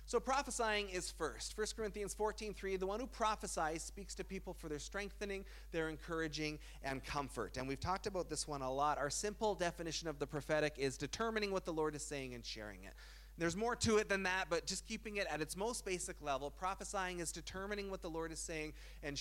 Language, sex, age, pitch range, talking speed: English, male, 30-49, 150-200 Hz, 220 wpm